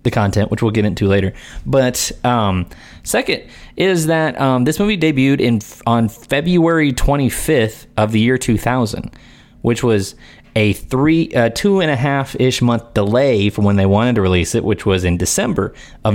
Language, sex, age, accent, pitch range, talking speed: English, male, 20-39, American, 95-130 Hz, 180 wpm